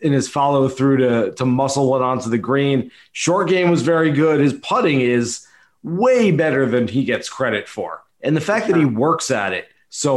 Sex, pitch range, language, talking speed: male, 130-180 Hz, English, 205 wpm